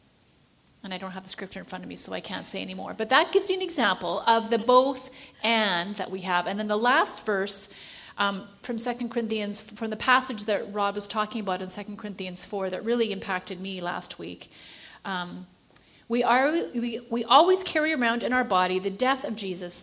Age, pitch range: 30-49, 190-230 Hz